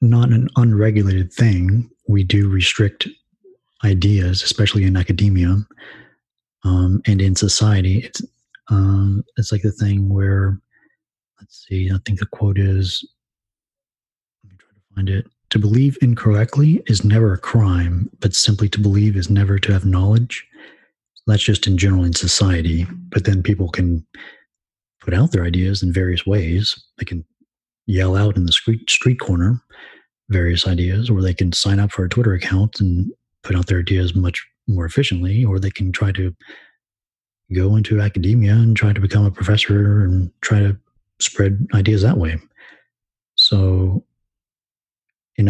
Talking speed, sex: 160 wpm, male